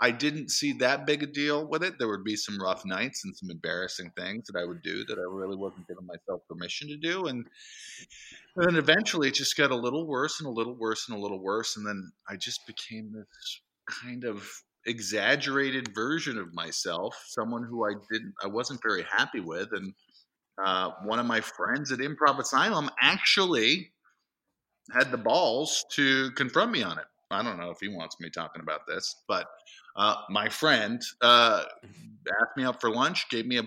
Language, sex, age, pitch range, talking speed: English, male, 30-49, 100-140 Hz, 200 wpm